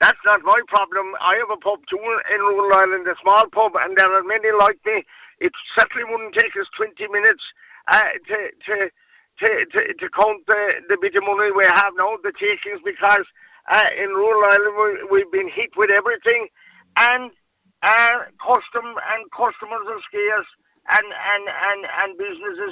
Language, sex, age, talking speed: English, male, 50-69, 180 wpm